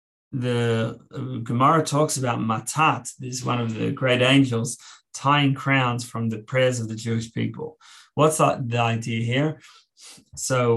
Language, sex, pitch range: English, male, 115-135 Hz